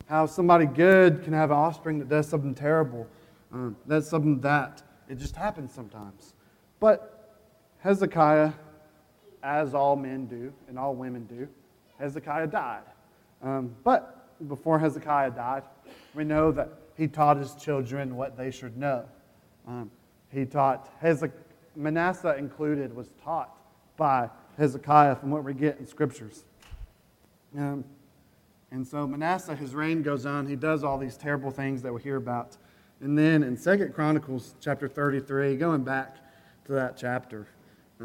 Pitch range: 130-155 Hz